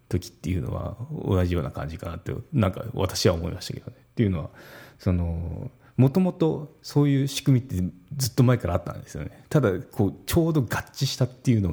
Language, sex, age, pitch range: Japanese, male, 30-49, 90-130 Hz